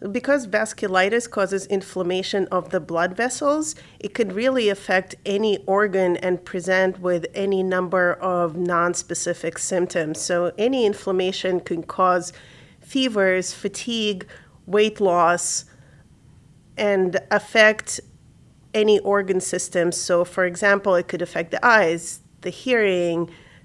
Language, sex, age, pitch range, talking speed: English, female, 40-59, 175-205 Hz, 115 wpm